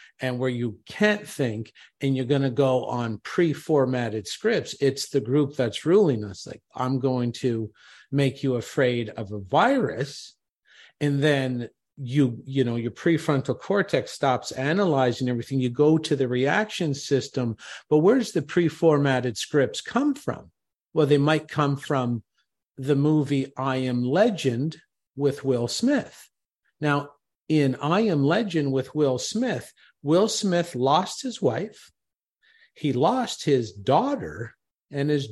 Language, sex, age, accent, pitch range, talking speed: English, male, 50-69, American, 125-160 Hz, 145 wpm